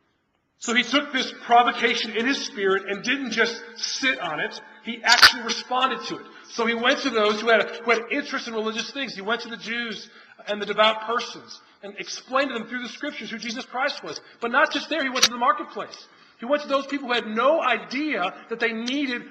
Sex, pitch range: male, 180-245 Hz